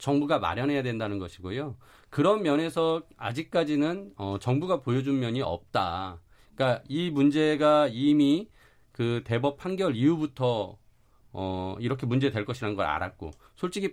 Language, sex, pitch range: Korean, male, 110-150 Hz